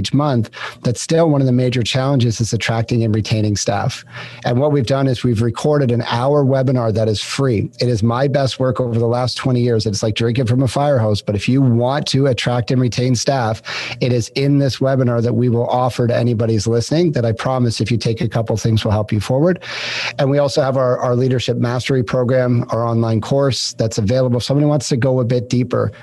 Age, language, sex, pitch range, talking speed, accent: 40-59, English, male, 115-135 Hz, 230 wpm, American